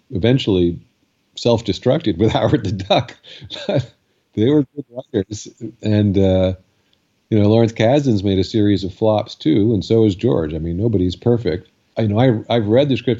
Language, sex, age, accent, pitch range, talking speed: Swedish, male, 50-69, American, 90-110 Hz, 175 wpm